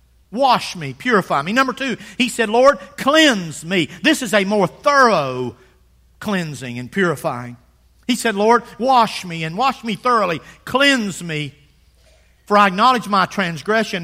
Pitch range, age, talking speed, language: 175-245 Hz, 50-69, 150 wpm, English